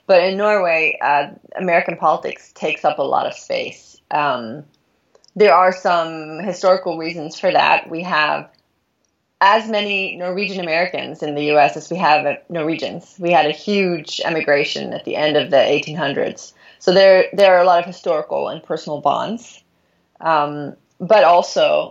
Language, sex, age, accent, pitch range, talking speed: English, female, 30-49, American, 150-190 Hz, 160 wpm